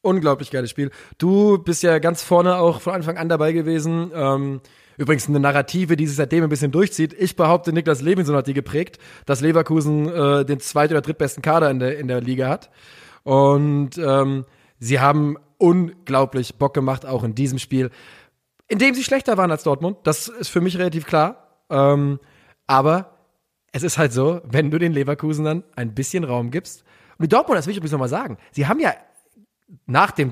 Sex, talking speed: male, 190 wpm